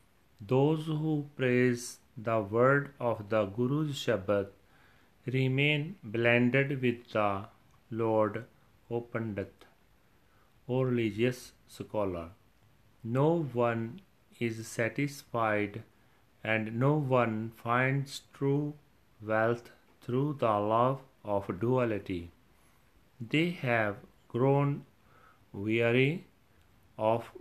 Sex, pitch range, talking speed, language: male, 110-130 Hz, 85 wpm, Punjabi